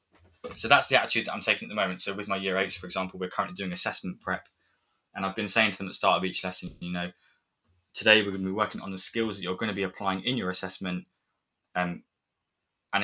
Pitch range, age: 95-105 Hz, 20-39